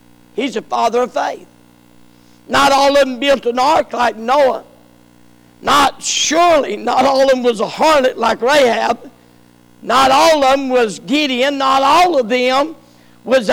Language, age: English, 50-69